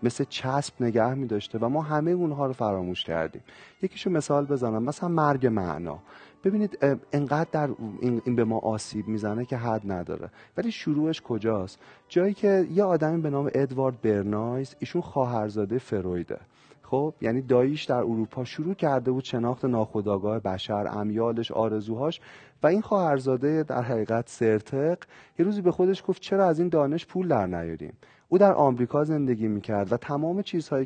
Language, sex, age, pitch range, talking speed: Persian, male, 30-49, 110-150 Hz, 160 wpm